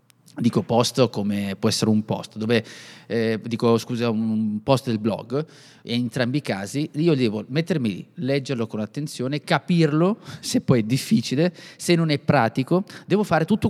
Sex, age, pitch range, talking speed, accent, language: male, 30-49, 115-145 Hz, 170 wpm, native, Italian